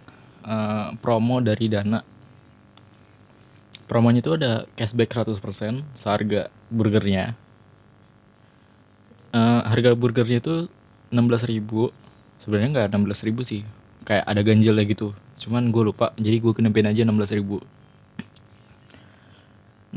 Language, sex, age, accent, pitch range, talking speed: Indonesian, male, 20-39, native, 105-120 Hz, 100 wpm